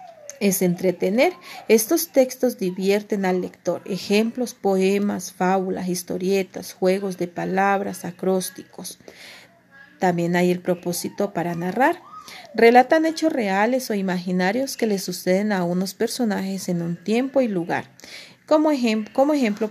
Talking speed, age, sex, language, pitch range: 120 wpm, 40-59, female, Spanish, 185-255 Hz